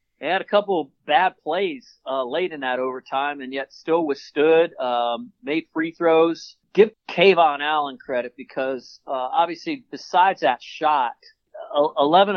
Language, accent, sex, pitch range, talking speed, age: English, American, male, 125-155 Hz, 150 wpm, 40-59